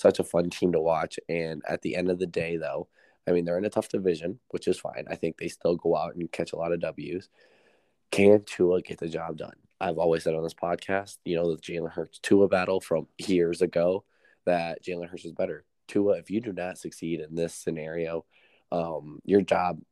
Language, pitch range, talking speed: English, 85-95 Hz, 230 wpm